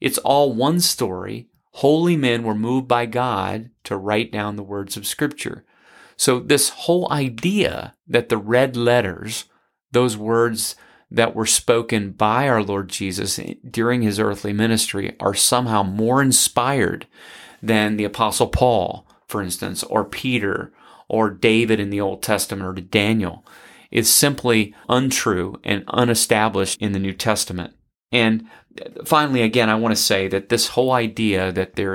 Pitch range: 100-120 Hz